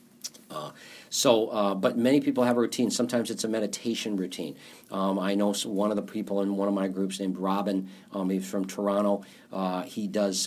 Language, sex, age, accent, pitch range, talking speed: English, male, 50-69, American, 95-115 Hz, 200 wpm